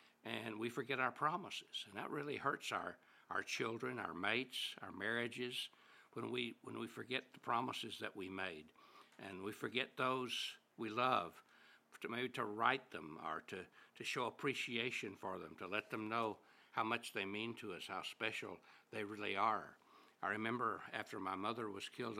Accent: American